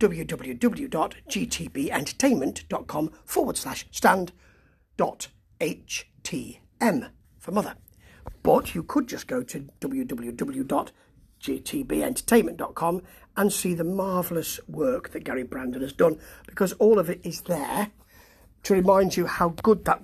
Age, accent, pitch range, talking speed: 50-69, British, 170-230 Hz, 110 wpm